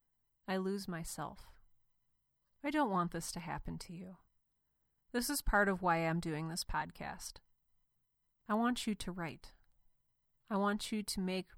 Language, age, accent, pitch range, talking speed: English, 30-49, American, 165-195 Hz, 155 wpm